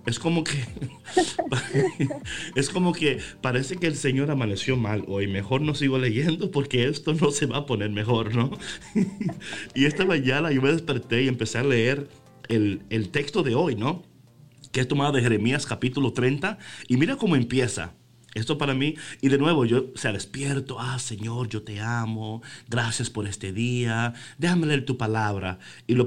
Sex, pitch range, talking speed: male, 115-150 Hz, 175 wpm